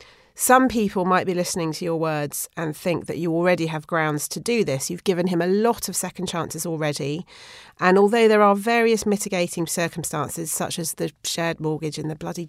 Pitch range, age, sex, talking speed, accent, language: 160-225 Hz, 40-59, female, 200 wpm, British, English